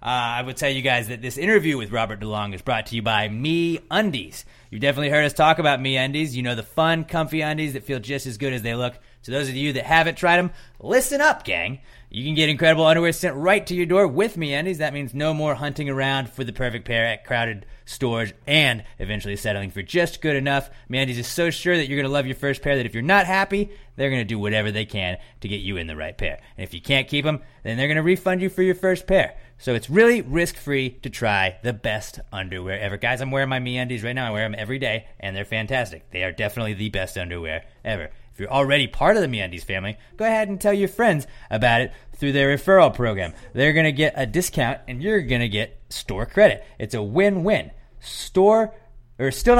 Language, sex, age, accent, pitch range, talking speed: English, male, 30-49, American, 115-160 Hz, 245 wpm